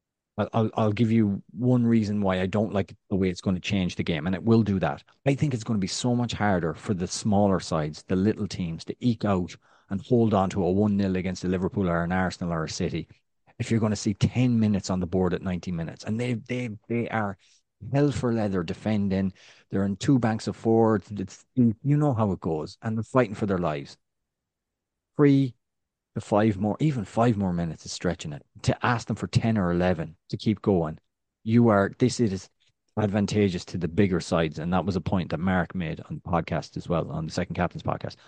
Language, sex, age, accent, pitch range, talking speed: English, male, 30-49, Irish, 95-115 Hz, 225 wpm